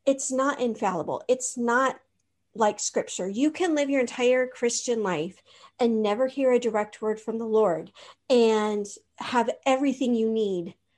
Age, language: 40-59, English